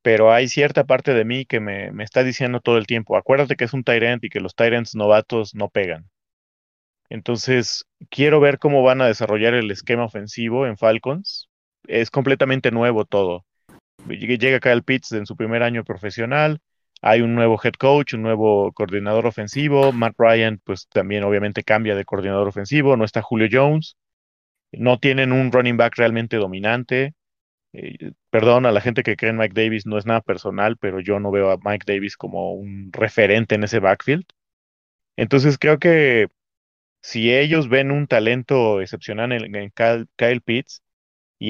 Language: Spanish